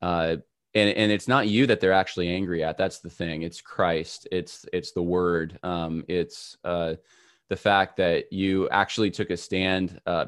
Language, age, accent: English, 20-39, American